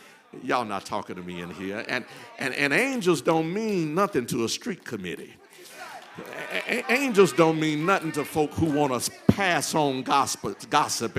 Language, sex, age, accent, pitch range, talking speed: English, male, 60-79, American, 135-185 Hz, 170 wpm